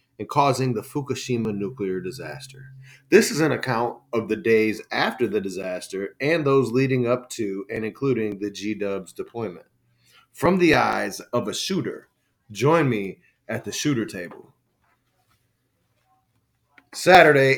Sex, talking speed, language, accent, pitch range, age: male, 135 wpm, English, American, 115-145 Hz, 30-49